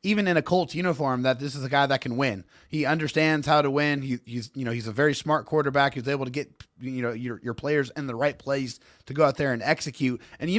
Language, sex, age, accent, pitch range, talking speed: English, male, 30-49, American, 135-175 Hz, 270 wpm